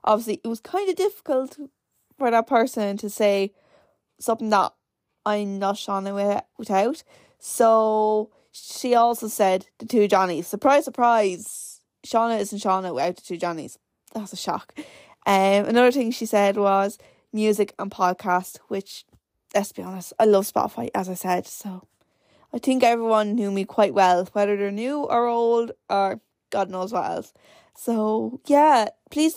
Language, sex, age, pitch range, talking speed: English, female, 20-39, 195-240 Hz, 155 wpm